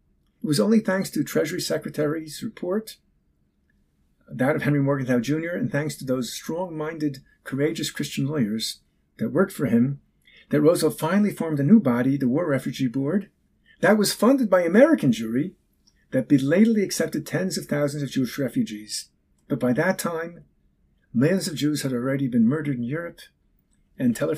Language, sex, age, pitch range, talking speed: English, male, 50-69, 125-185 Hz, 160 wpm